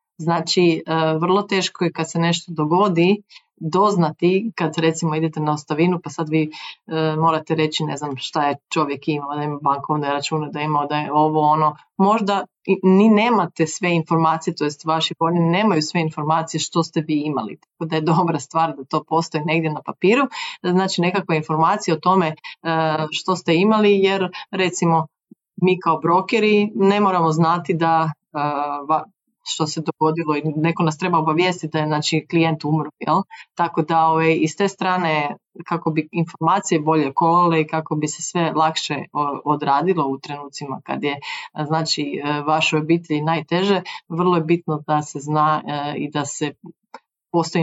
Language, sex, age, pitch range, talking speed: Croatian, female, 30-49, 150-175 Hz, 160 wpm